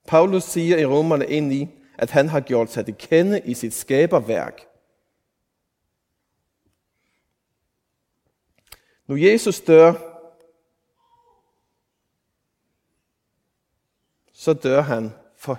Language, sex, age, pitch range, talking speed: Danish, male, 30-49, 125-165 Hz, 85 wpm